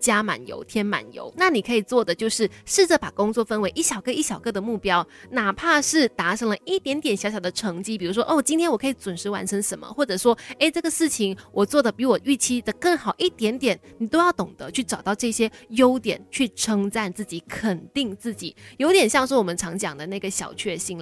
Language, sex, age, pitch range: Chinese, female, 20-39, 200-270 Hz